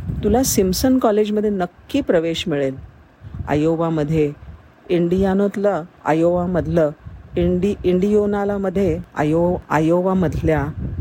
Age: 50-69